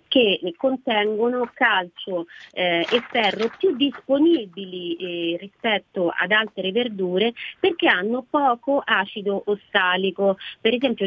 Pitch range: 185-245 Hz